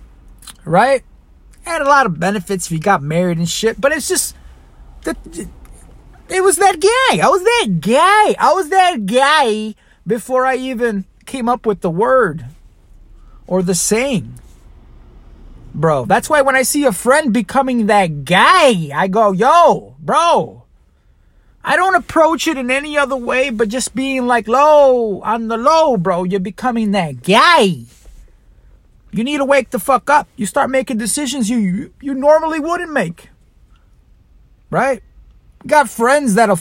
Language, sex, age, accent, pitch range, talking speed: English, male, 30-49, American, 185-280 Hz, 155 wpm